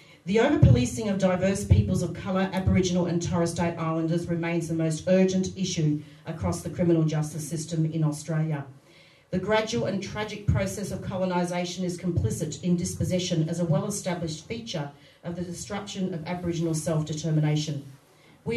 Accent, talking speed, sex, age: Australian, 150 wpm, female, 40-59